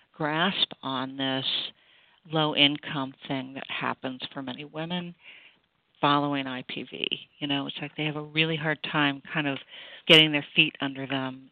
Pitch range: 135-165 Hz